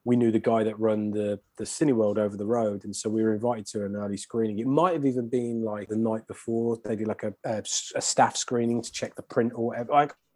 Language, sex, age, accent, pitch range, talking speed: English, male, 20-39, British, 105-125 Hz, 265 wpm